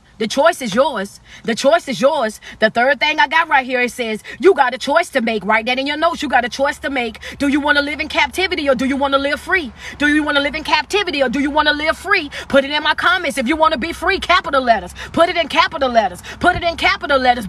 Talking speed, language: 290 wpm, English